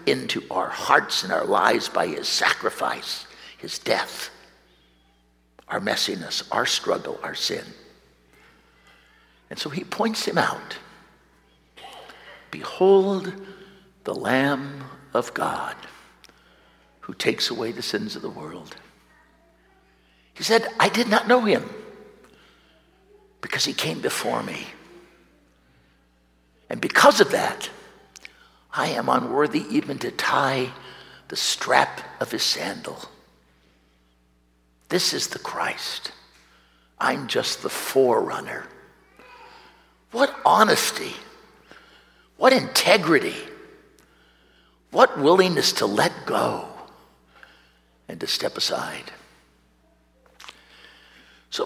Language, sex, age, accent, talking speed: English, male, 60-79, American, 100 wpm